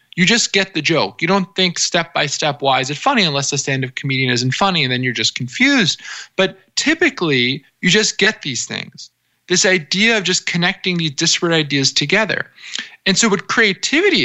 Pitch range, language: 150-195 Hz, English